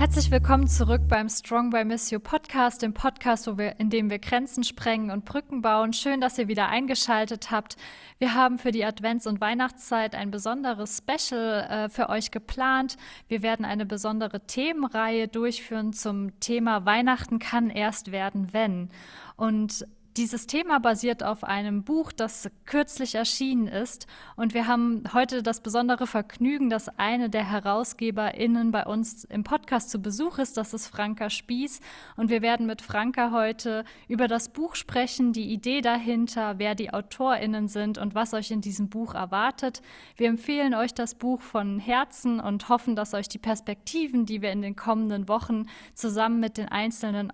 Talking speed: 170 wpm